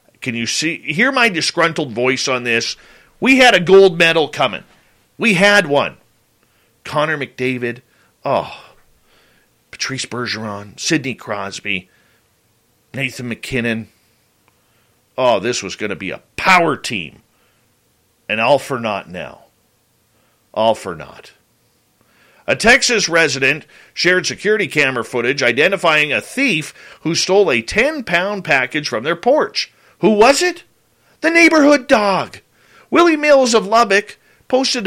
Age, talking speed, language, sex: 40-59, 125 wpm, English, male